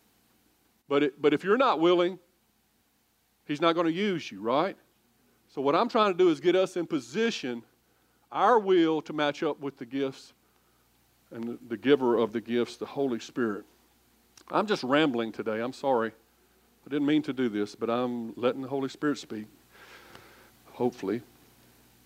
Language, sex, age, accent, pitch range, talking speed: English, male, 50-69, American, 120-180 Hz, 165 wpm